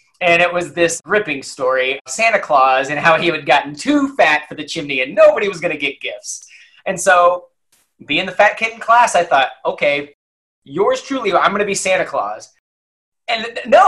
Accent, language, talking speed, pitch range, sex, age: American, English, 205 wpm, 160-205 Hz, male, 30-49